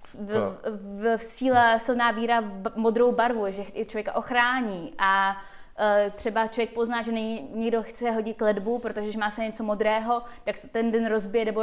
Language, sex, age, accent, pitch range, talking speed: Czech, female, 20-39, native, 210-240 Hz, 175 wpm